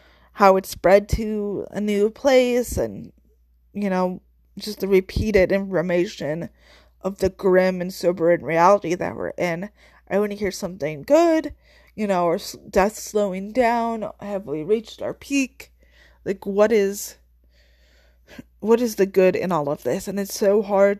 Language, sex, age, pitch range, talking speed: English, female, 20-39, 160-200 Hz, 155 wpm